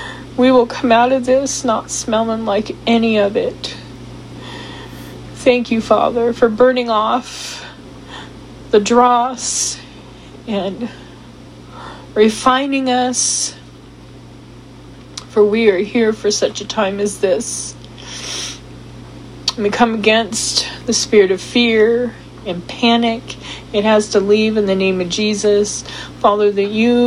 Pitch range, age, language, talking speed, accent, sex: 210-245 Hz, 40-59, English, 120 wpm, American, female